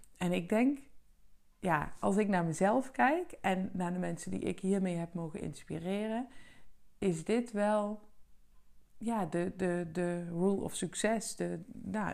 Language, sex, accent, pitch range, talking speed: Dutch, female, Dutch, 170-215 Hz, 155 wpm